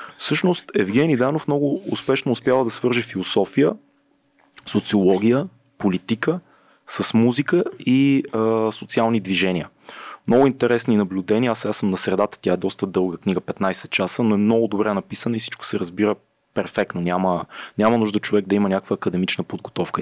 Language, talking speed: Bulgarian, 150 wpm